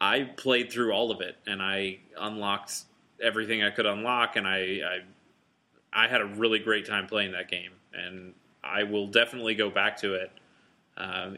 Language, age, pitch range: English, 30-49, 100-125 Hz